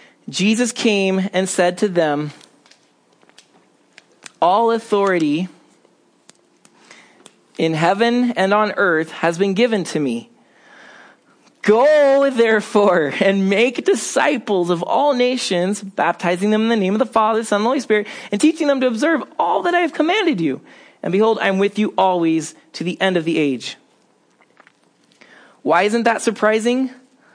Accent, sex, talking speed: American, male, 150 wpm